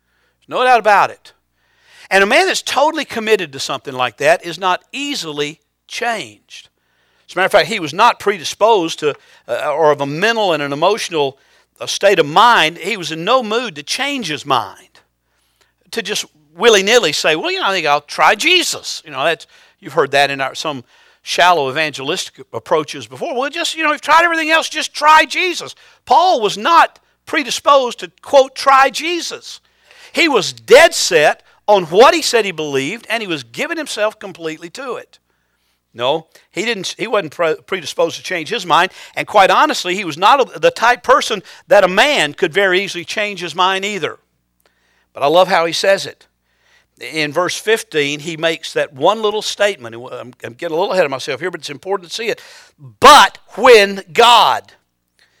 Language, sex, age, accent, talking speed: English, male, 50-69, American, 185 wpm